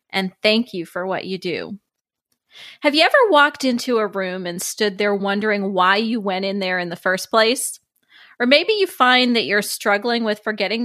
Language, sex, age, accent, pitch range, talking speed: English, female, 30-49, American, 195-270 Hz, 200 wpm